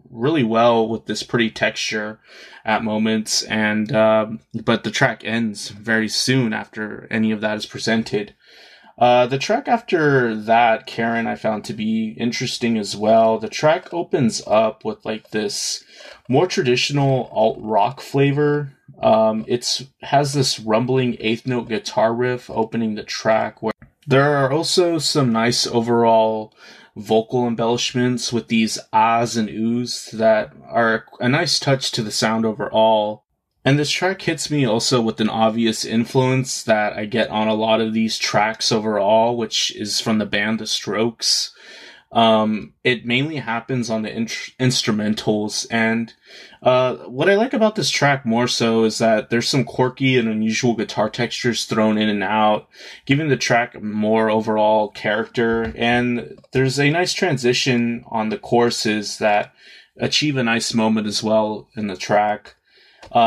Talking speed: 155 wpm